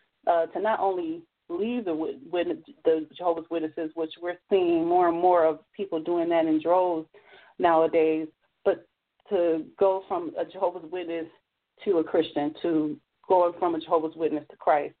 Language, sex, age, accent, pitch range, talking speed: English, female, 30-49, American, 170-195 Hz, 170 wpm